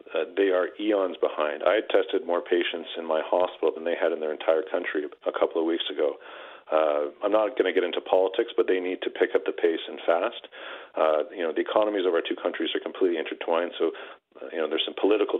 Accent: American